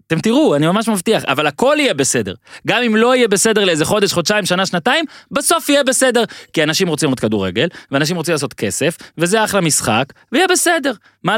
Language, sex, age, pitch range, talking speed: Hebrew, male, 20-39, 145-210 Hz, 195 wpm